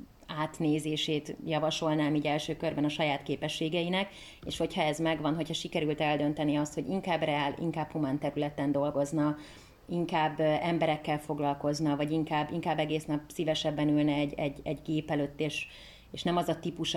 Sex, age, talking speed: female, 30-49, 155 wpm